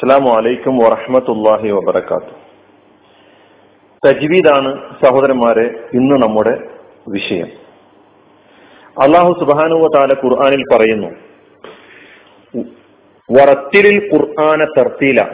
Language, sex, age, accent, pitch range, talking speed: Malayalam, male, 40-59, native, 135-180 Hz, 60 wpm